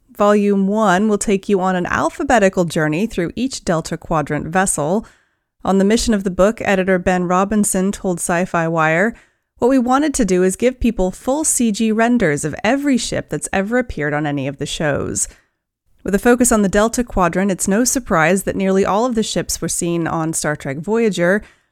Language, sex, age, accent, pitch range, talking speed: English, female, 30-49, American, 175-240 Hz, 195 wpm